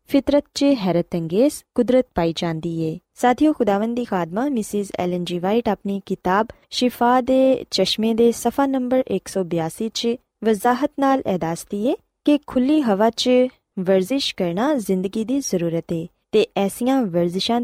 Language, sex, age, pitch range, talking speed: Punjabi, female, 20-39, 185-255 Hz, 140 wpm